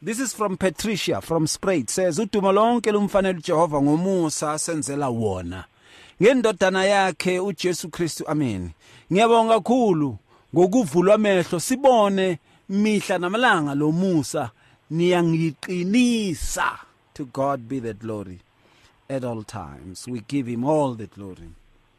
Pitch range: 115-190 Hz